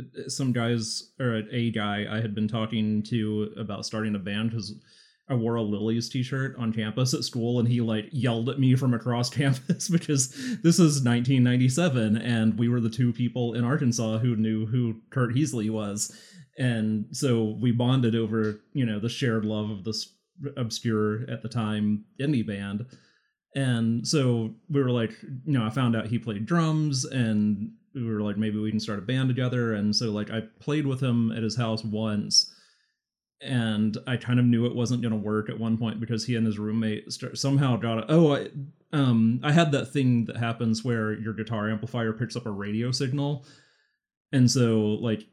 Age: 30-49